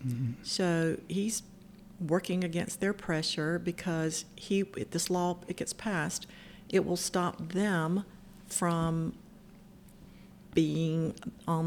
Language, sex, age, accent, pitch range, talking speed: English, female, 50-69, American, 165-195 Hz, 110 wpm